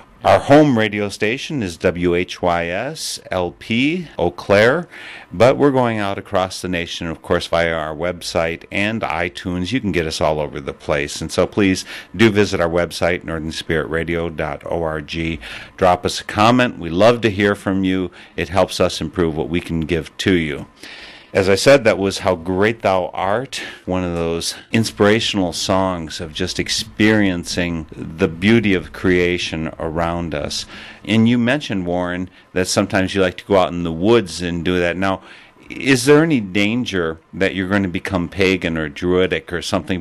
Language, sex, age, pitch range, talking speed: English, male, 50-69, 85-105 Hz, 170 wpm